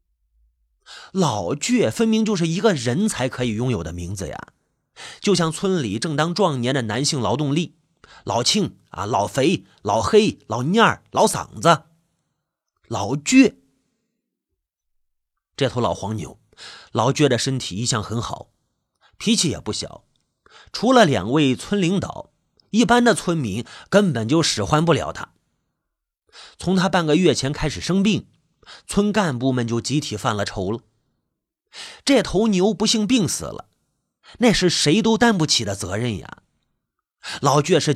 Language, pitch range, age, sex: Chinese, 115-185 Hz, 30-49, male